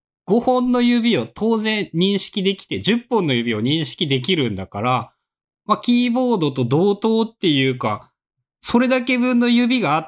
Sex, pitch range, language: male, 125-190 Hz, Japanese